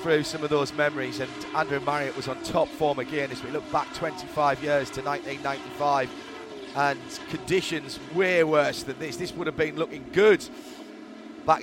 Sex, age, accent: male, 30-49, British